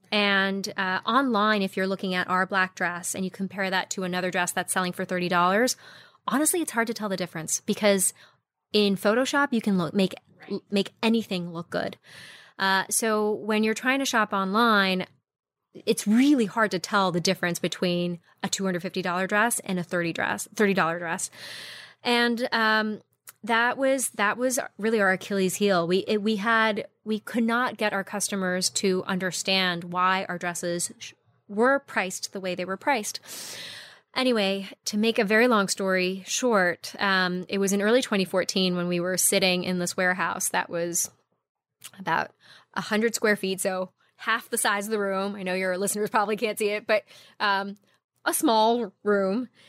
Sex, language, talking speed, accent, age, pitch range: female, English, 180 wpm, American, 20-39, 185-220 Hz